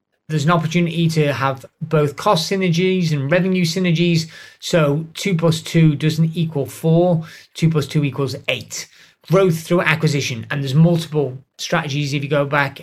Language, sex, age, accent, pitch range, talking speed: English, male, 30-49, British, 145-175 Hz, 160 wpm